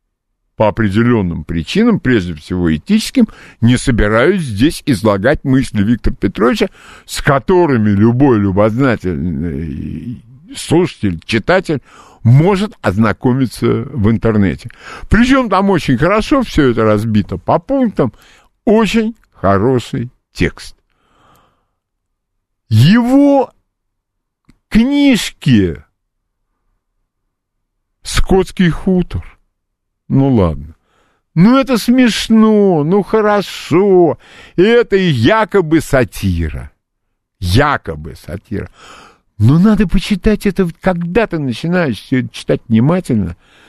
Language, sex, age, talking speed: Russian, male, 50-69, 85 wpm